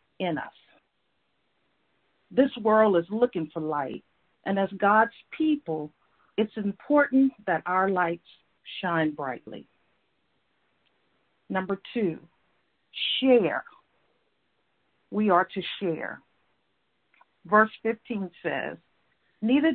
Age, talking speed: 50-69, 85 wpm